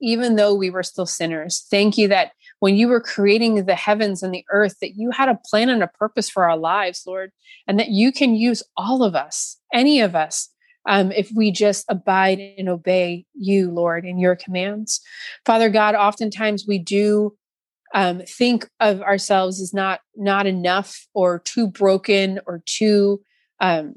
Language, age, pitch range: English, 30-49, 185-220 Hz